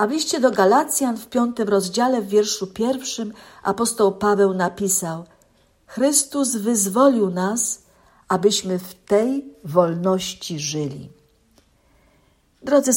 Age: 50-69